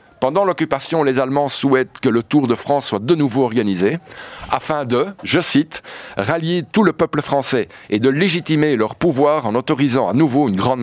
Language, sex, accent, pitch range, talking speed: French, male, French, 115-155 Hz, 190 wpm